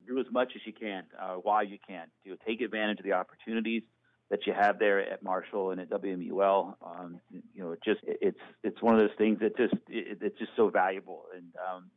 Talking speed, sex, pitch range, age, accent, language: 245 wpm, male, 95-110 Hz, 40-59, American, English